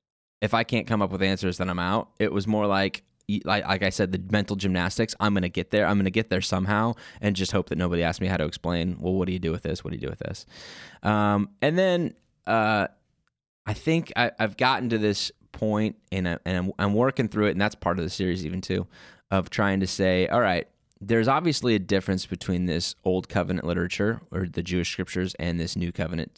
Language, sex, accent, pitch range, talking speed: English, male, American, 90-105 Hz, 235 wpm